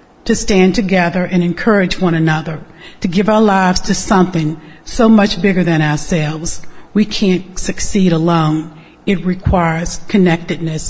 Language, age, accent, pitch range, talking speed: English, 50-69, American, 165-190 Hz, 140 wpm